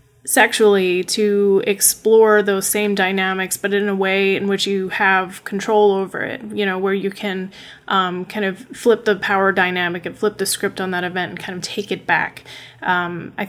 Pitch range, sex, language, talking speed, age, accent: 190-220 Hz, female, English, 195 wpm, 20-39, American